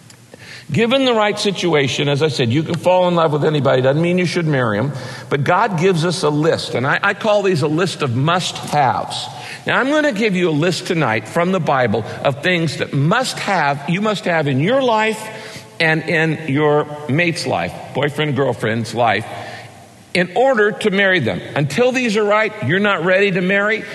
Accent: American